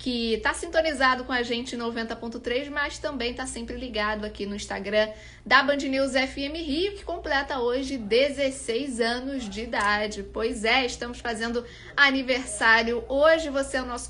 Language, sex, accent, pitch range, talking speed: Portuguese, female, Brazilian, 230-280 Hz, 160 wpm